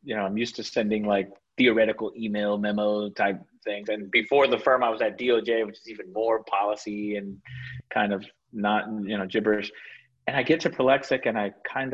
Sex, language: male, English